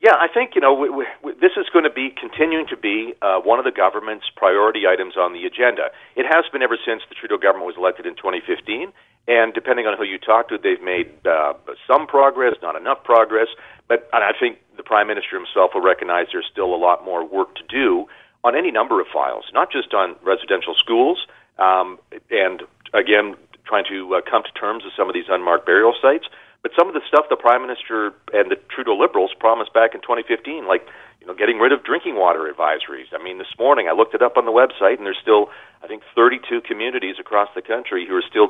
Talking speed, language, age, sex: 220 wpm, English, 40-59, male